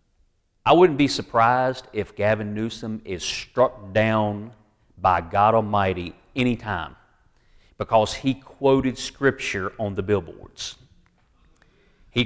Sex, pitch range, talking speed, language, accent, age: male, 105-135 Hz, 110 wpm, English, American, 40-59